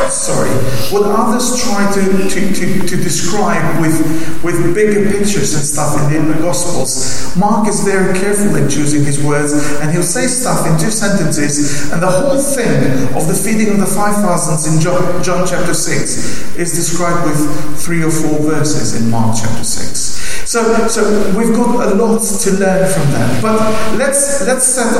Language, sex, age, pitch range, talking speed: English, male, 40-59, 150-210 Hz, 175 wpm